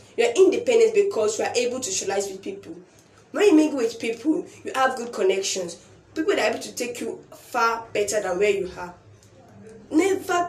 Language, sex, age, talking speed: English, female, 10-29, 190 wpm